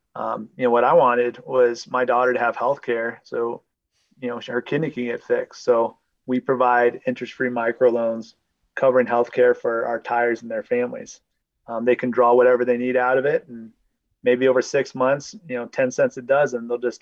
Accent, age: American, 30-49